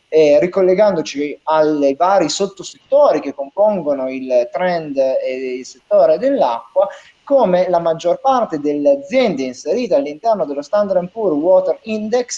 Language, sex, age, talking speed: Italian, male, 30-49, 125 wpm